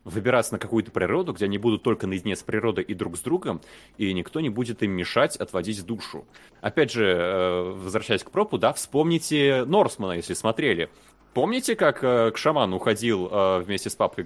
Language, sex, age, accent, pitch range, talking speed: Russian, male, 20-39, native, 100-140 Hz, 175 wpm